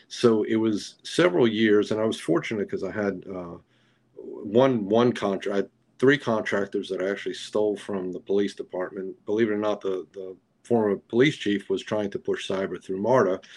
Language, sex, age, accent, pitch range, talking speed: English, male, 40-59, American, 95-110 Hz, 185 wpm